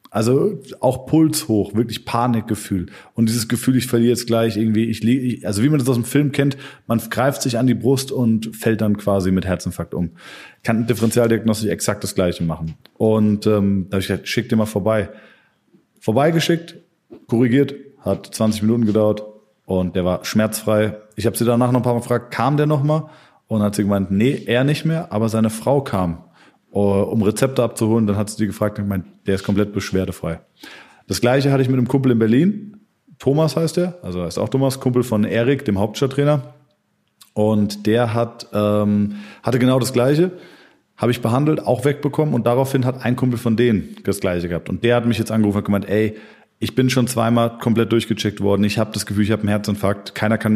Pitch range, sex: 105-125 Hz, male